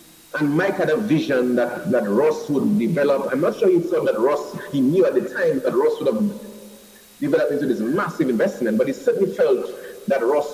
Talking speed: 210 wpm